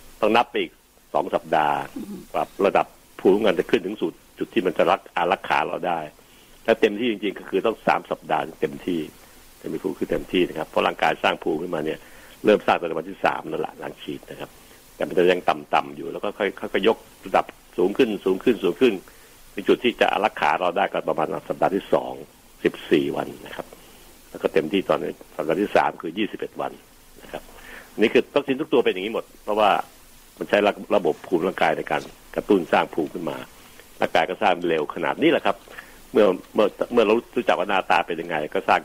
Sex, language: male, Thai